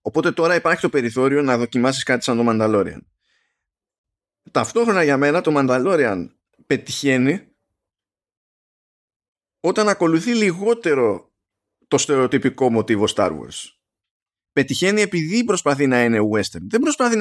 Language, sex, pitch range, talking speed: Greek, male, 110-155 Hz, 115 wpm